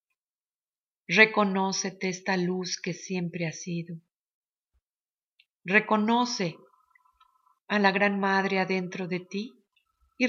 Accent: Mexican